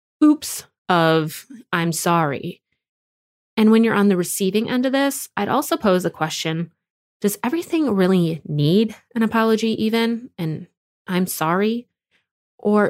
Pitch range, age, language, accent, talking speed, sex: 160-215 Hz, 20-39, English, American, 135 wpm, female